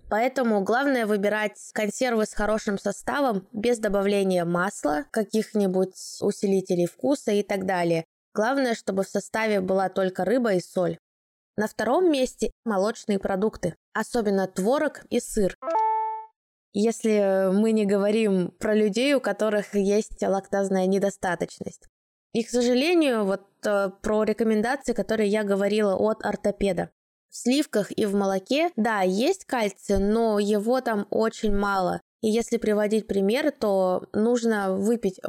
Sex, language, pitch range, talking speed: female, Russian, 195-230 Hz, 130 wpm